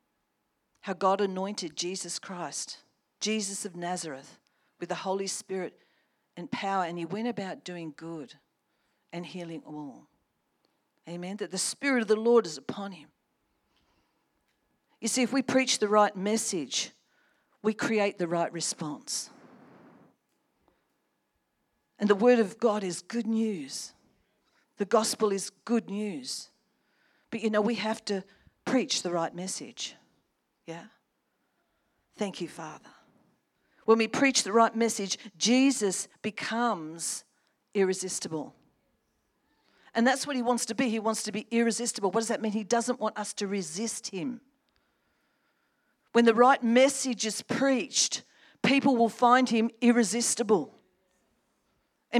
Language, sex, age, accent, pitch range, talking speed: English, female, 50-69, Australian, 195-245 Hz, 135 wpm